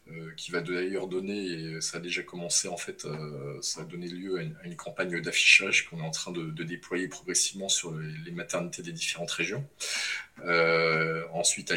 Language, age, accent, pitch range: French, 20-39, French, 85-105 Hz